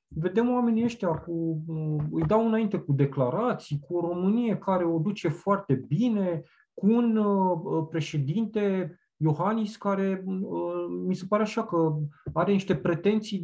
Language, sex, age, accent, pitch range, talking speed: Romanian, male, 20-39, native, 135-185 Hz, 135 wpm